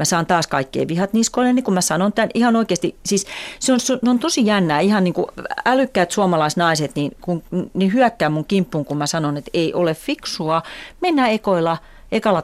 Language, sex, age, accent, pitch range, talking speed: Finnish, female, 40-59, native, 150-225 Hz, 205 wpm